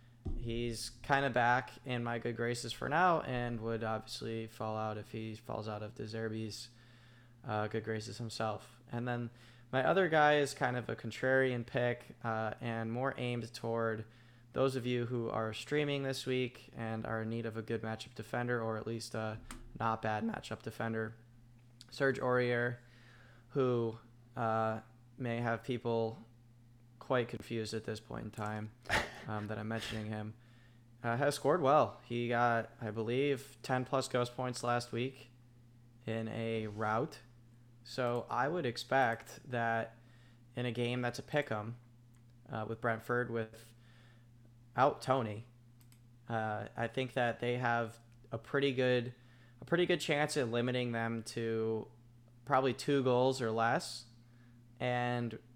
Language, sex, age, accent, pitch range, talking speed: English, male, 10-29, American, 115-125 Hz, 155 wpm